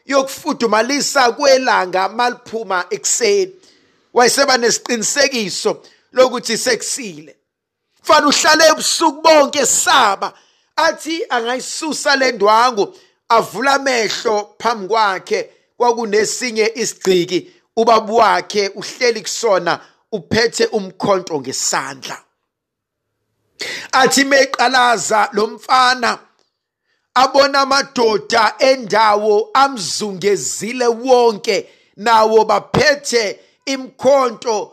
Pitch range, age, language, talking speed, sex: 190-270 Hz, 50-69, English, 70 wpm, male